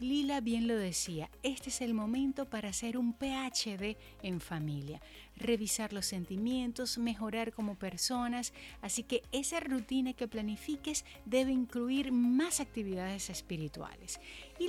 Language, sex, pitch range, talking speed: Spanish, female, 190-245 Hz, 130 wpm